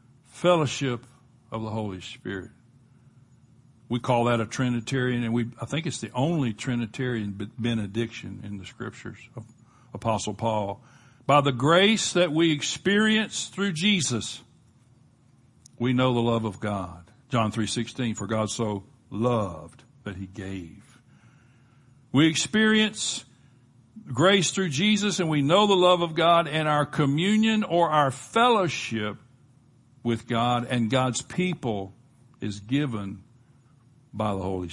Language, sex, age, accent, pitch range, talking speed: English, male, 60-79, American, 110-135 Hz, 135 wpm